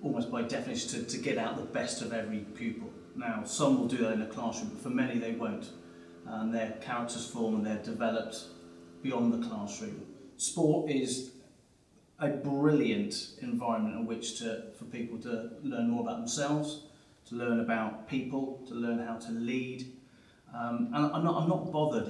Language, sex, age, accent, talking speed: English, male, 30-49, British, 175 wpm